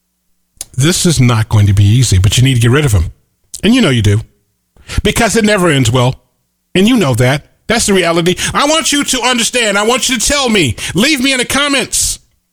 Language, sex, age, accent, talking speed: English, male, 30-49, American, 230 wpm